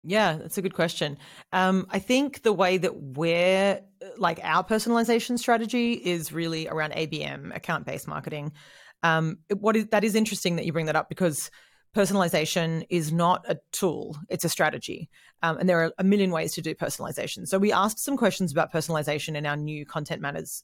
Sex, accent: female, Australian